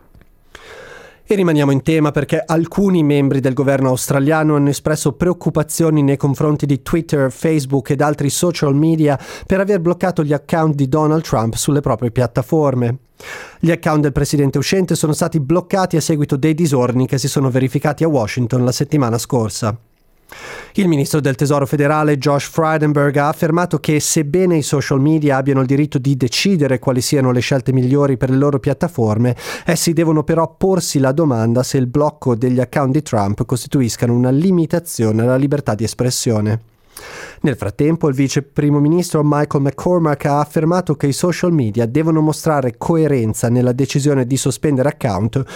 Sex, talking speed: male, 165 wpm